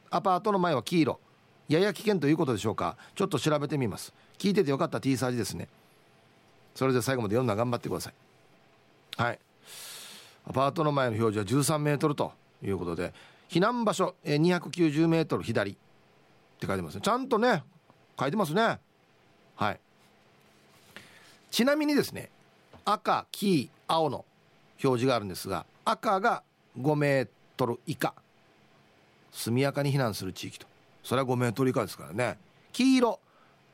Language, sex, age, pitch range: Japanese, male, 40-59, 125-195 Hz